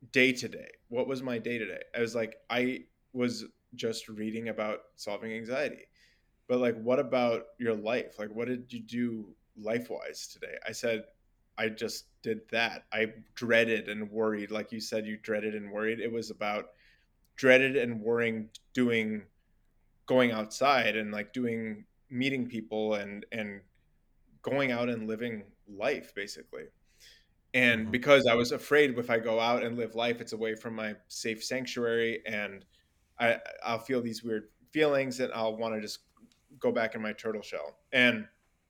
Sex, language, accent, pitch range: male, English, American, 110-125 Hz